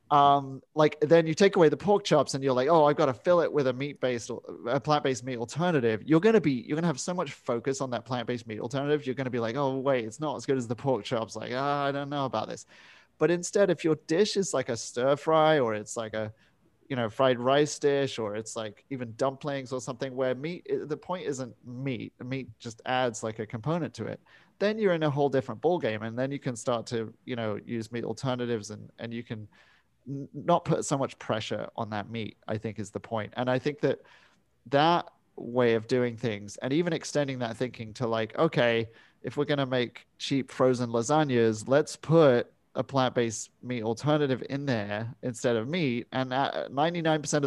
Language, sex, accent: English, male, British